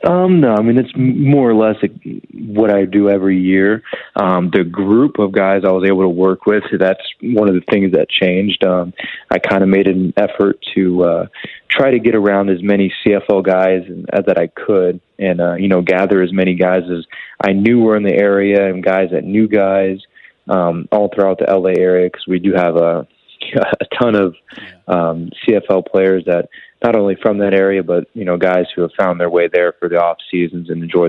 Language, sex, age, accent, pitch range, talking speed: English, male, 20-39, American, 90-100 Hz, 220 wpm